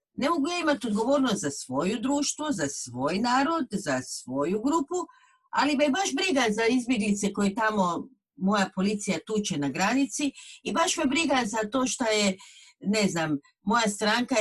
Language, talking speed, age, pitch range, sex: Croatian, 160 wpm, 50-69, 175-255 Hz, female